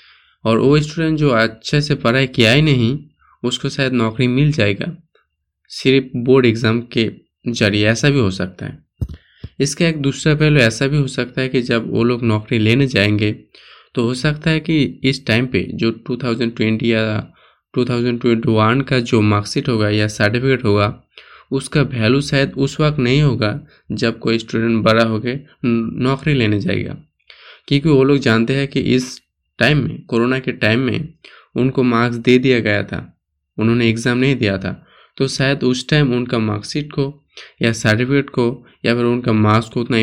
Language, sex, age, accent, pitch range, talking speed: Hindi, male, 20-39, native, 110-135 Hz, 175 wpm